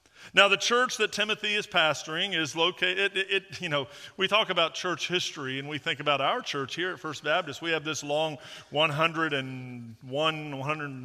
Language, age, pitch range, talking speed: English, 40-59, 140-185 Hz, 215 wpm